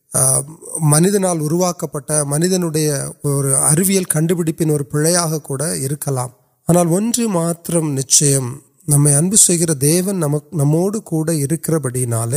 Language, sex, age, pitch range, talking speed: Urdu, male, 30-49, 140-175 Hz, 55 wpm